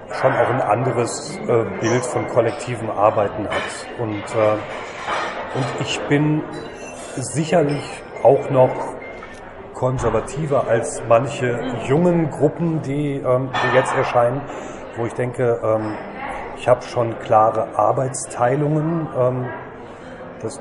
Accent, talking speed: German, 115 wpm